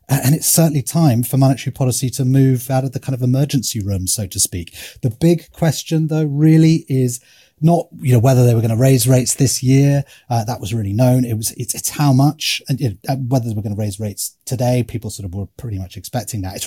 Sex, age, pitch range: male, 30-49, 105-135 Hz